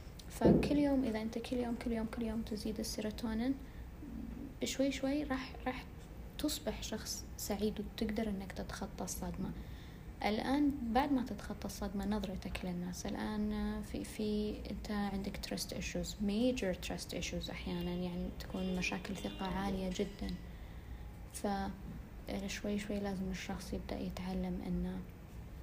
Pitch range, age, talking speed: 185-210 Hz, 20-39, 130 wpm